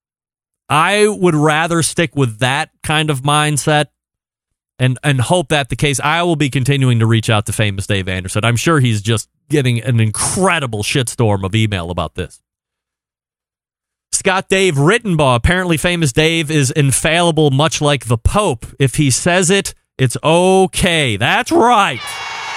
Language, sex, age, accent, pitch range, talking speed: English, male, 30-49, American, 120-160 Hz, 155 wpm